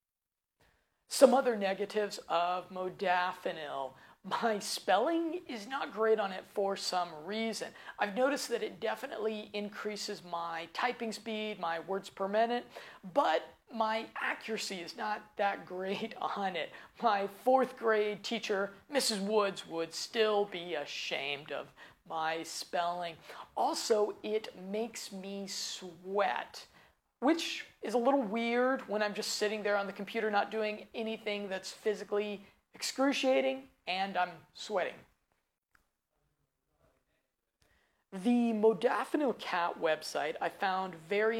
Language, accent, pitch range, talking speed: English, American, 180-225 Hz, 120 wpm